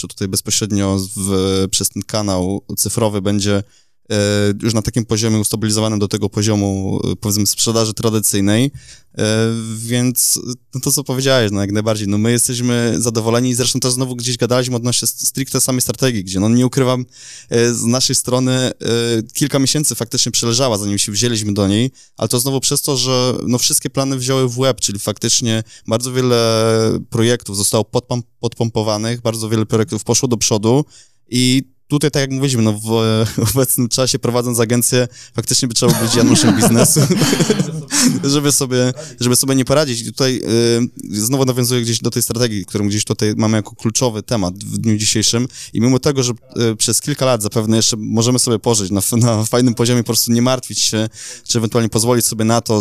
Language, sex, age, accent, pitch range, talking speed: Polish, male, 20-39, native, 110-125 Hz, 175 wpm